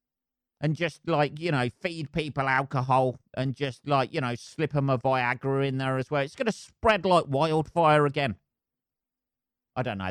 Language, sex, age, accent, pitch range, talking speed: English, male, 40-59, British, 125-160 Hz, 185 wpm